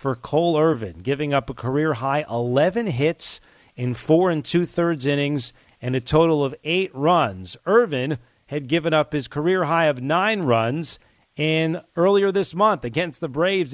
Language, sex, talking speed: English, male, 155 wpm